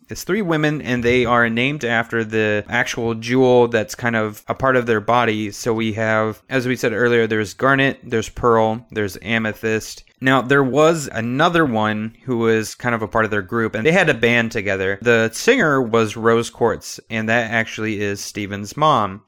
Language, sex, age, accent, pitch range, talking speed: English, male, 30-49, American, 110-135 Hz, 195 wpm